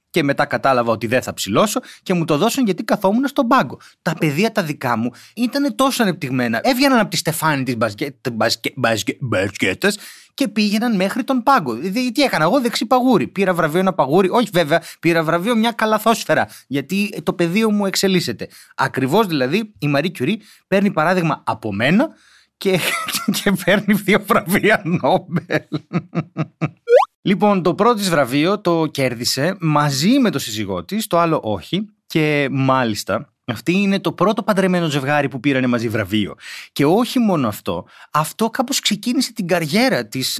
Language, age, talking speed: Greek, 30-49, 155 wpm